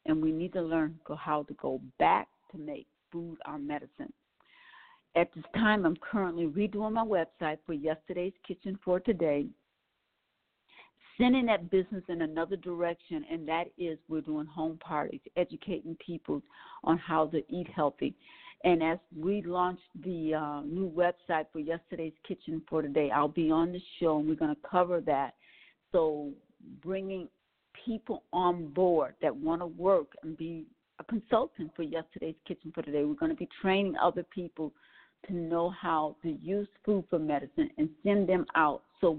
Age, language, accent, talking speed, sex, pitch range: 50-69, English, American, 165 wpm, female, 155-190 Hz